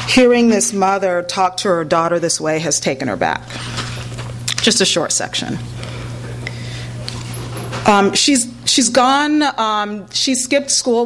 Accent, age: American, 30-49